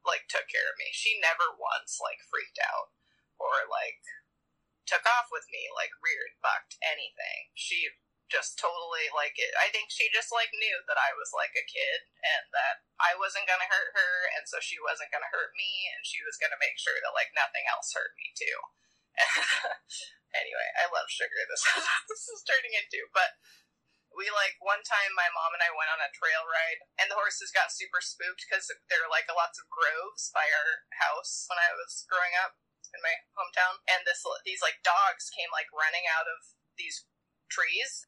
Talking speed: 200 wpm